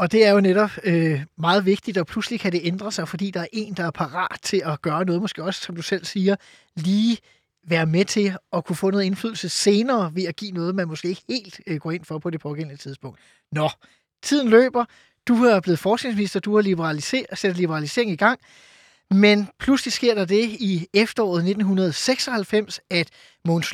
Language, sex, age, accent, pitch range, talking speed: Danish, male, 20-39, native, 170-210 Hz, 200 wpm